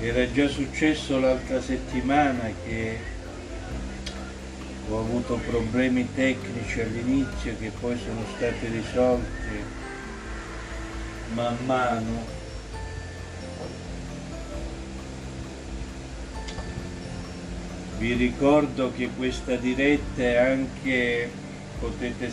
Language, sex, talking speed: Italian, male, 70 wpm